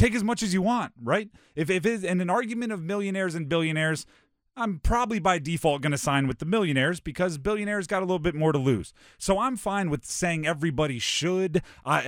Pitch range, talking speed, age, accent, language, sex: 125-185 Hz, 220 wpm, 30-49, American, English, male